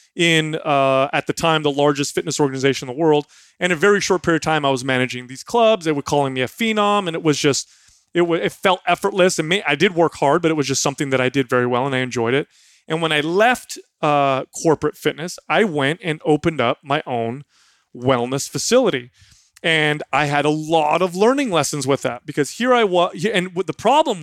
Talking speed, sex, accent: 235 wpm, male, American